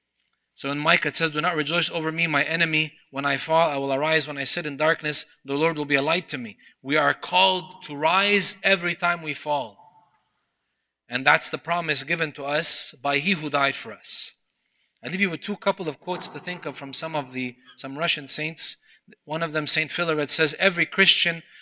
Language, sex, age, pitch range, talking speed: English, male, 30-49, 150-185 Hz, 215 wpm